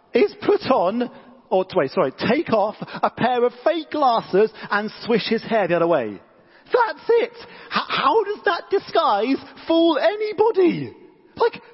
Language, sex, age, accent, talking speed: English, male, 40-59, British, 155 wpm